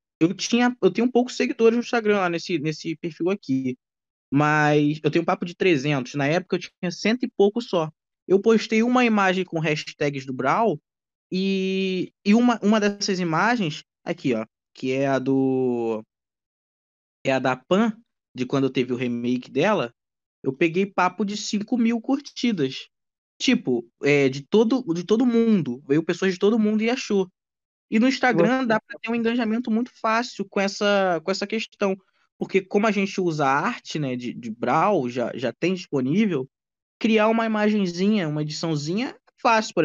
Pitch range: 150-210 Hz